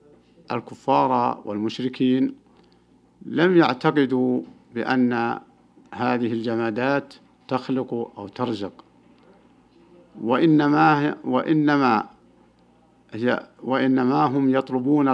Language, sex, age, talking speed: Arabic, male, 50-69, 55 wpm